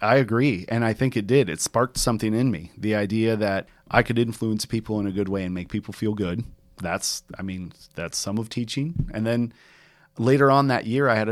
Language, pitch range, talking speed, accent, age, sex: English, 100-125 Hz, 230 wpm, American, 30-49, male